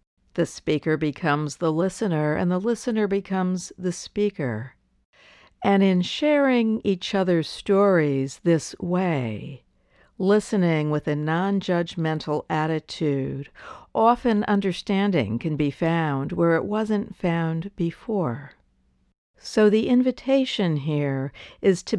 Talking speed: 110 wpm